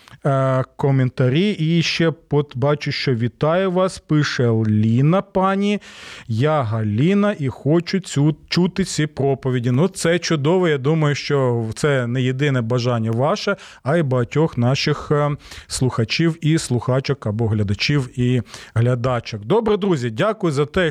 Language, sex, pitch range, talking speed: Ukrainian, male, 130-190 Hz, 130 wpm